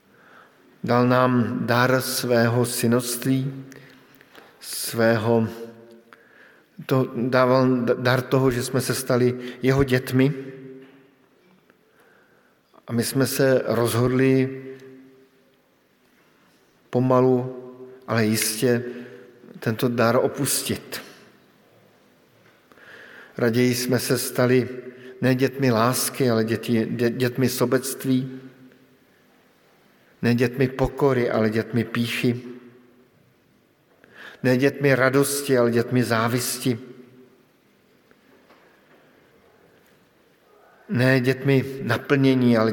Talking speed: 75 wpm